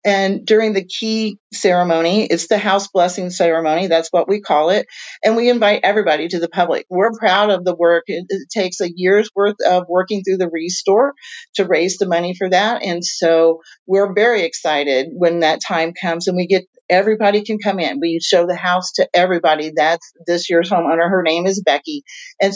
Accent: American